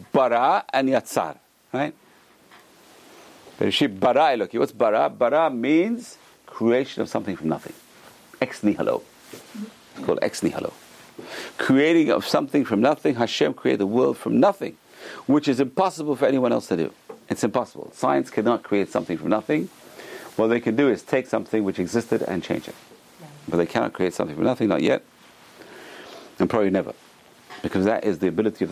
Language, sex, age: English, male, 50-69